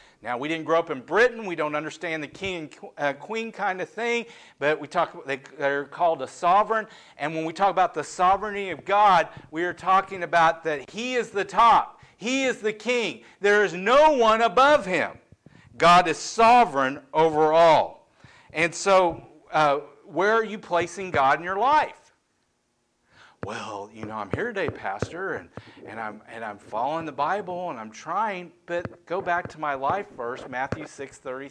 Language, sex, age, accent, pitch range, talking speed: English, male, 50-69, American, 145-205 Hz, 180 wpm